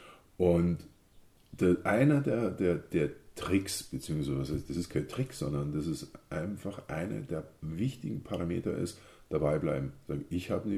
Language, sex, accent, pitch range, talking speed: German, male, German, 85-130 Hz, 145 wpm